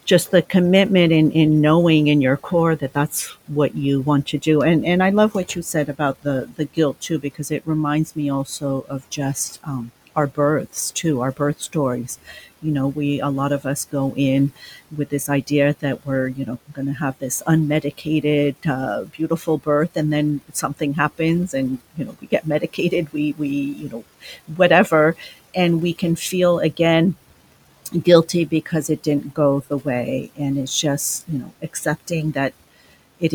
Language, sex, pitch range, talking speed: English, female, 140-165 Hz, 180 wpm